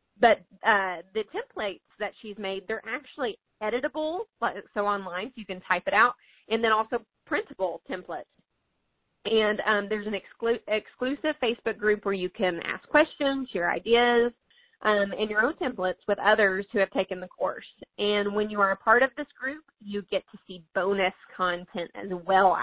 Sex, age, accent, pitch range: female, 30-49, American, 190-235 Hz